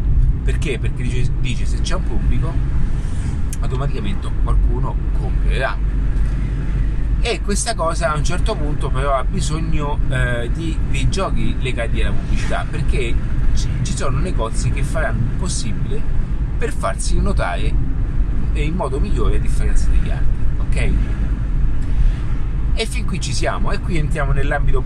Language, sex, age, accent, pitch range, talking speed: Italian, male, 30-49, native, 125-155 Hz, 140 wpm